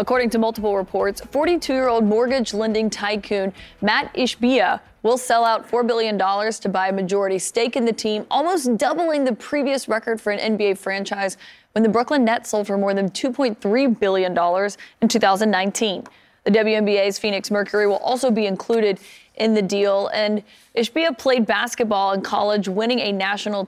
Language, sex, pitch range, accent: English, female, 200-240 Hz, American